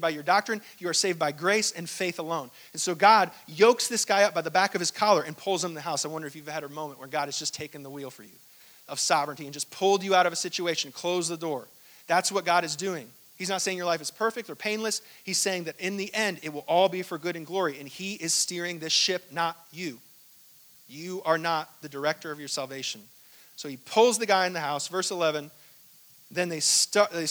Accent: American